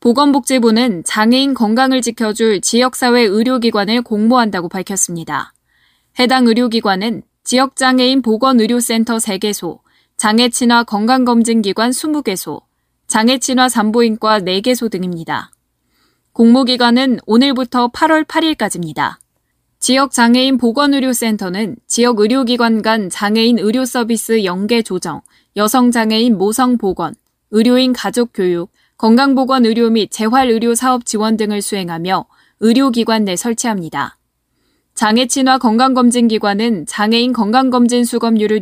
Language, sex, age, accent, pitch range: Korean, female, 10-29, native, 210-250 Hz